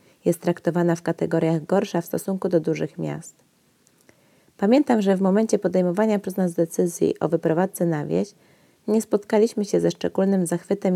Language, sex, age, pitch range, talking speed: Polish, female, 20-39, 160-190 Hz, 155 wpm